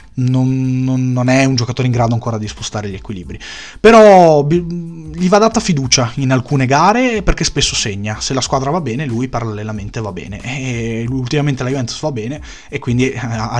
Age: 30-49